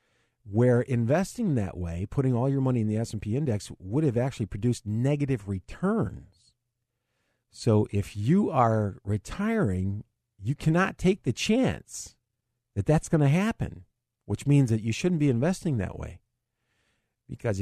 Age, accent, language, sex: 50-69, American, English, male